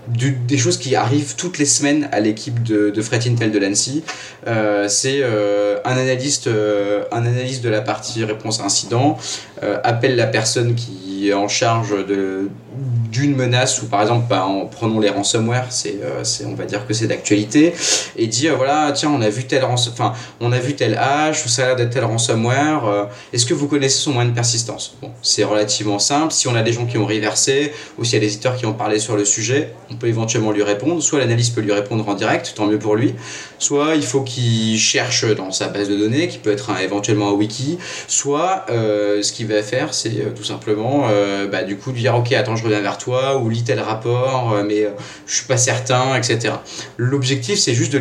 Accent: French